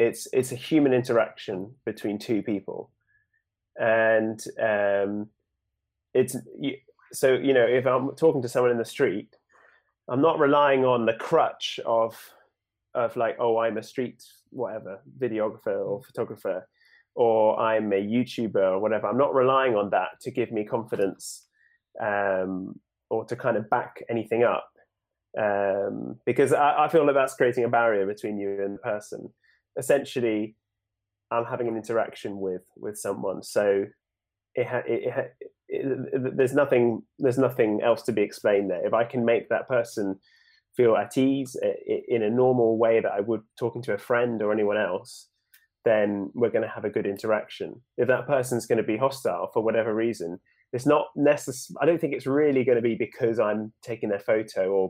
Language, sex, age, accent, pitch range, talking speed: English, male, 20-39, British, 105-140 Hz, 175 wpm